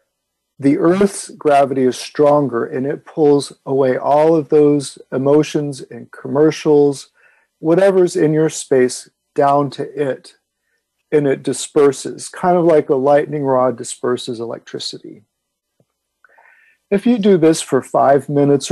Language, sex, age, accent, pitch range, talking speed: English, male, 50-69, American, 135-155 Hz, 130 wpm